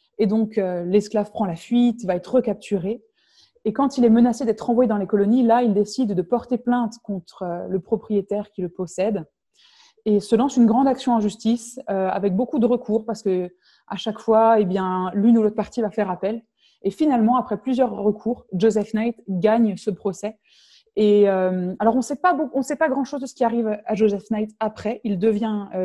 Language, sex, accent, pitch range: French, female, French, 195-230 Hz